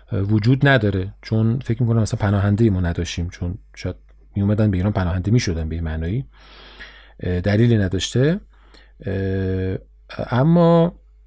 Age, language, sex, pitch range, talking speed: 40-59, Persian, male, 100-135 Hz, 125 wpm